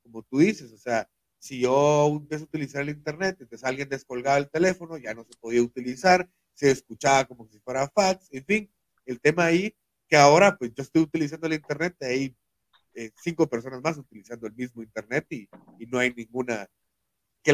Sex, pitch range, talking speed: male, 125-180 Hz, 195 wpm